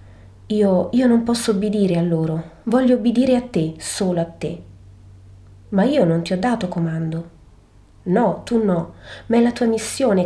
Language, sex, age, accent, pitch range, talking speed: Italian, female, 30-49, native, 170-220 Hz, 170 wpm